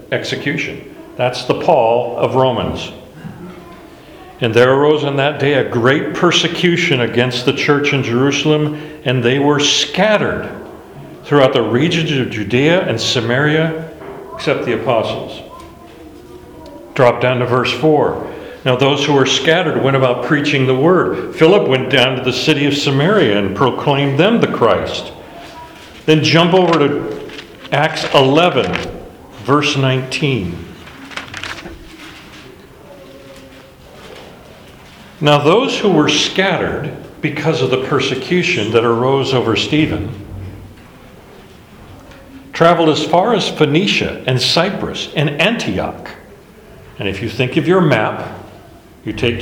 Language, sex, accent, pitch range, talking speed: English, male, American, 125-155 Hz, 125 wpm